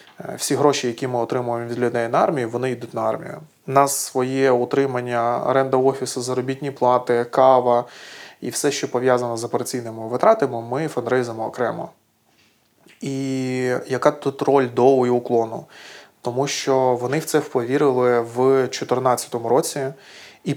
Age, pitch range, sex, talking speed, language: 20-39, 120-135 Hz, male, 140 wpm, Ukrainian